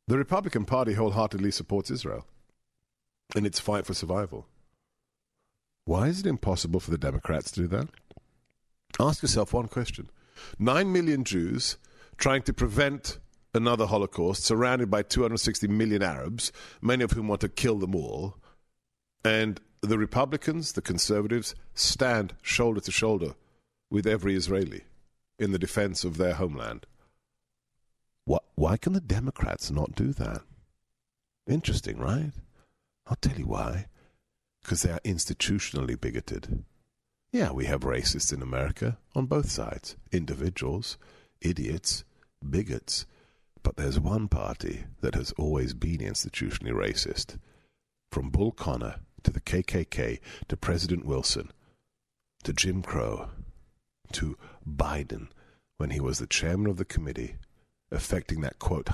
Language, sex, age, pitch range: English, male, 50-69, 80-110 Hz